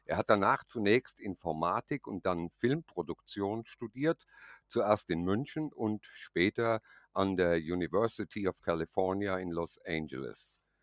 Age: 50-69